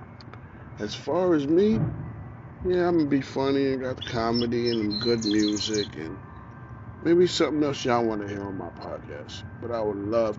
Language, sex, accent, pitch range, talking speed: English, male, American, 115-140 Hz, 185 wpm